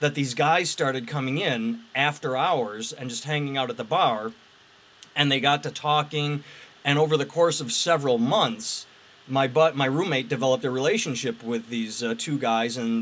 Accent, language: American, English